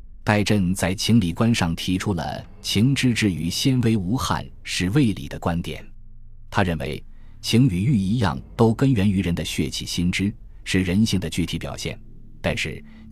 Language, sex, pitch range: Chinese, male, 85-110 Hz